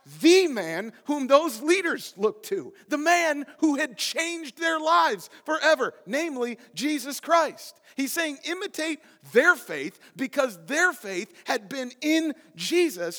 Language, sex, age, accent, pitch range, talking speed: English, male, 40-59, American, 205-290 Hz, 135 wpm